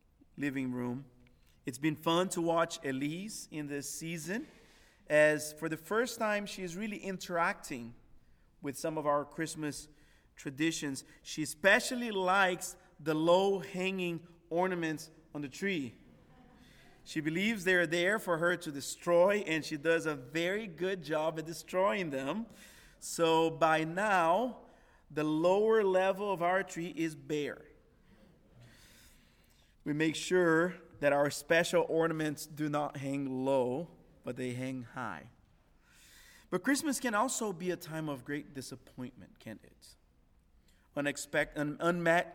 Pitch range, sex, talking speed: 145-185 Hz, male, 130 wpm